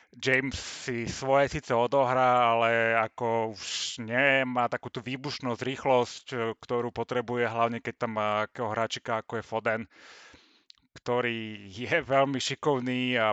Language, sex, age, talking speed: Slovak, male, 30-49, 120 wpm